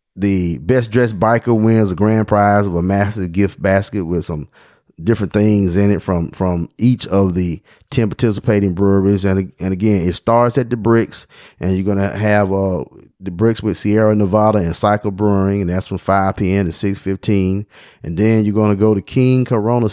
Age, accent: 30-49, American